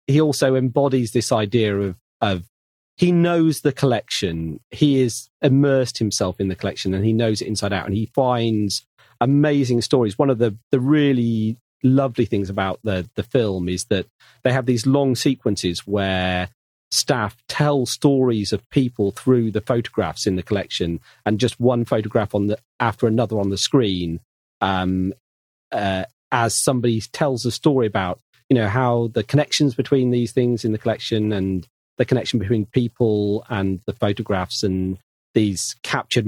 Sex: male